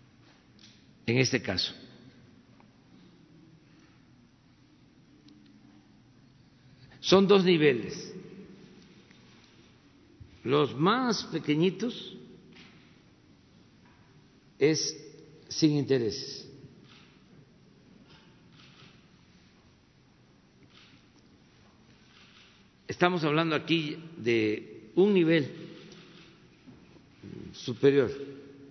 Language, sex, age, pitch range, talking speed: Spanish, male, 60-79, 130-165 Hz, 40 wpm